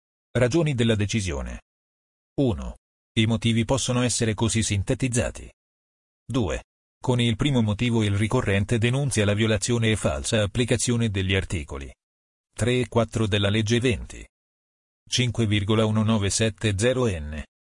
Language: Italian